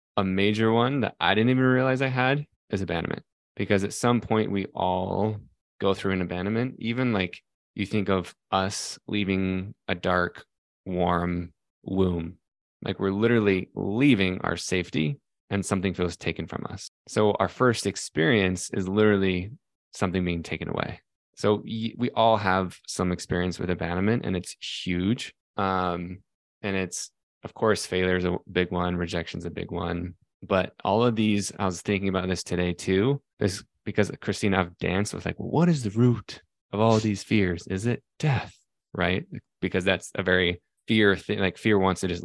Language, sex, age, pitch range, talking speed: English, male, 20-39, 90-105 Hz, 175 wpm